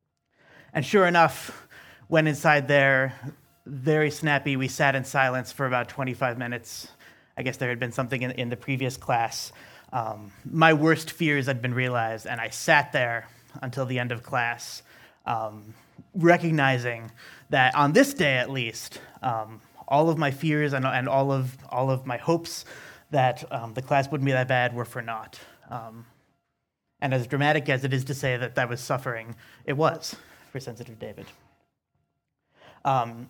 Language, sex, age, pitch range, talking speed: English, male, 30-49, 125-145 Hz, 170 wpm